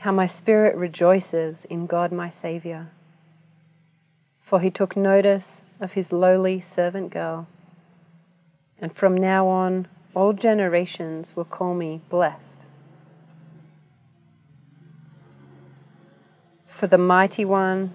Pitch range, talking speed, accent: 160-185 Hz, 105 wpm, Australian